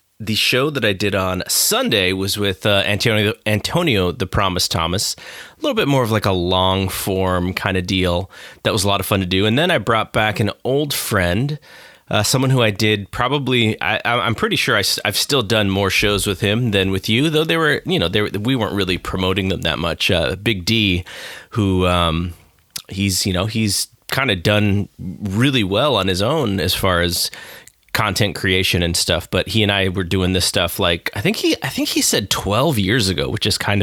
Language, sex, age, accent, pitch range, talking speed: English, male, 30-49, American, 95-120 Hz, 215 wpm